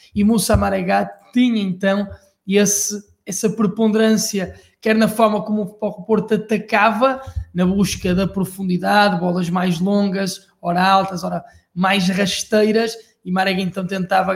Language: Portuguese